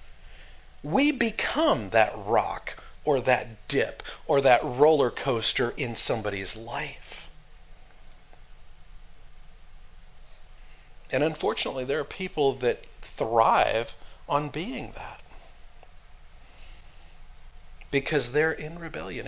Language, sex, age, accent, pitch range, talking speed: English, male, 40-59, American, 80-125 Hz, 85 wpm